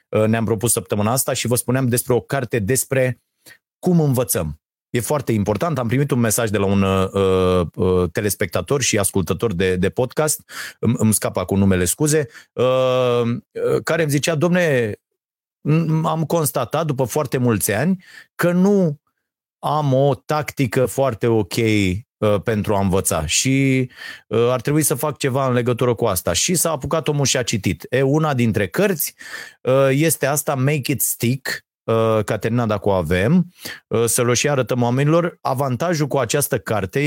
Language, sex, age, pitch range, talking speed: Romanian, male, 30-49, 110-150 Hz, 155 wpm